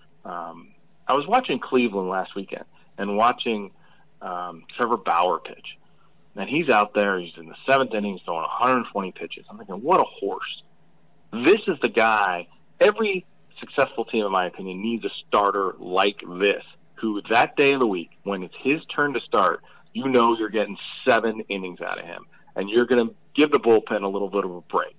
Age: 40-59